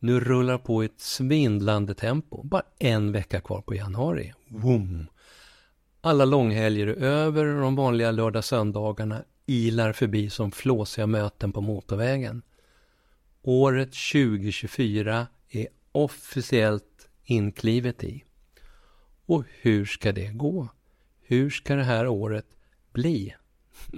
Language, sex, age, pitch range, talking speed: Swedish, male, 50-69, 110-135 Hz, 105 wpm